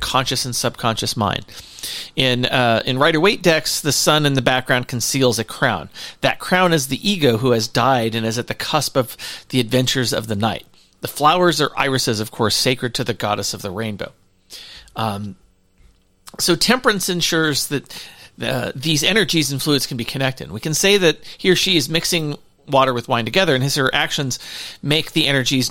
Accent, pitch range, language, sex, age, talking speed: American, 120-165 Hz, English, male, 40-59, 190 wpm